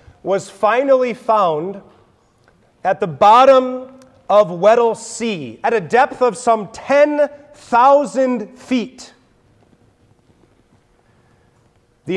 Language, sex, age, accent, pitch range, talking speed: English, male, 30-49, American, 190-255 Hz, 85 wpm